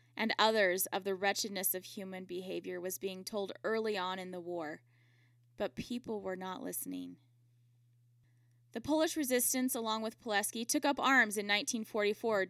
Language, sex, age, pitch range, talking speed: English, female, 10-29, 140-225 Hz, 155 wpm